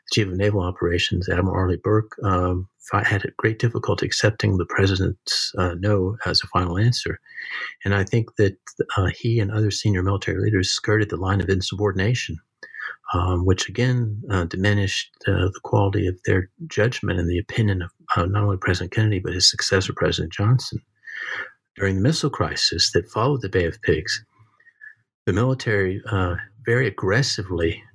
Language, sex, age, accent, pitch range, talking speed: English, male, 50-69, American, 95-115 Hz, 165 wpm